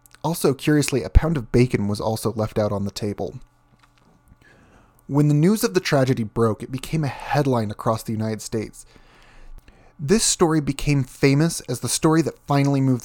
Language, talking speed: English, 175 wpm